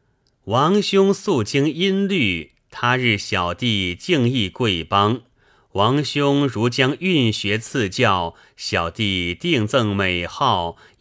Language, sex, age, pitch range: Chinese, male, 30-49, 95-130 Hz